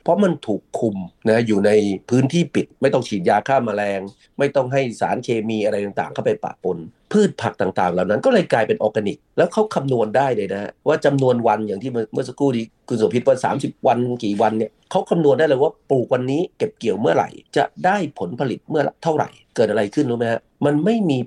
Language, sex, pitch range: Thai, male, 110-145 Hz